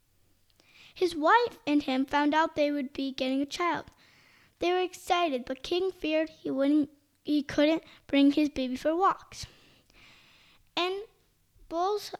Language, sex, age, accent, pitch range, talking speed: English, female, 20-39, American, 285-350 Hz, 145 wpm